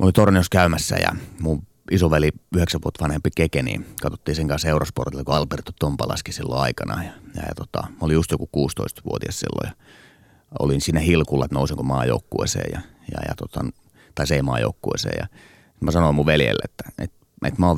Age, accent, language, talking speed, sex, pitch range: 30-49, native, Finnish, 180 wpm, male, 80-95 Hz